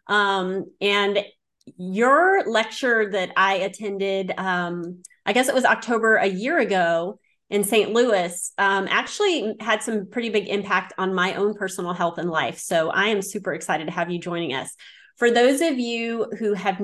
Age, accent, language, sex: 30-49, American, English, female